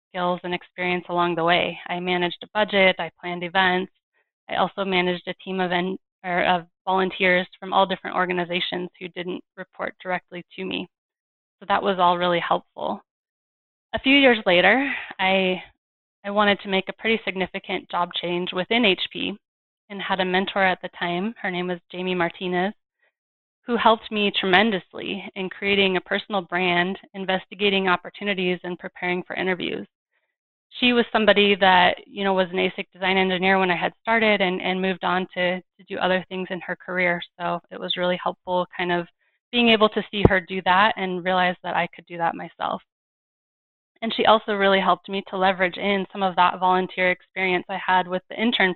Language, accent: English, American